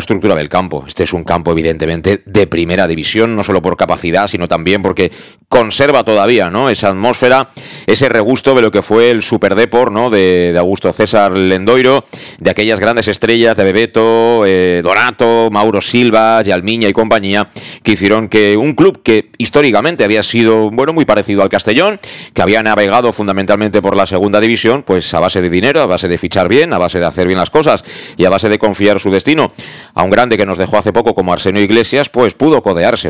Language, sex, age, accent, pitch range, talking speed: Spanish, male, 40-59, Spanish, 95-115 Hz, 200 wpm